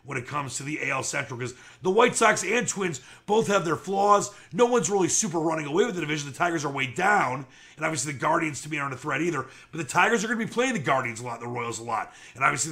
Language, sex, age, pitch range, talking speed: English, male, 30-49, 130-175 Hz, 280 wpm